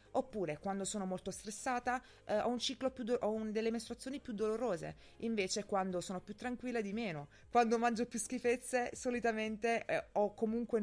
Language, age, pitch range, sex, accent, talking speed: Italian, 30-49, 160-230 Hz, female, native, 175 wpm